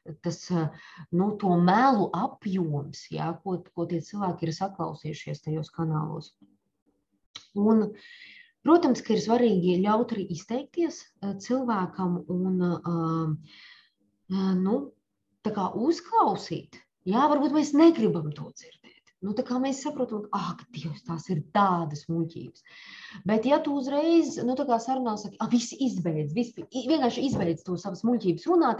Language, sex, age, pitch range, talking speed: English, female, 20-39, 165-230 Hz, 125 wpm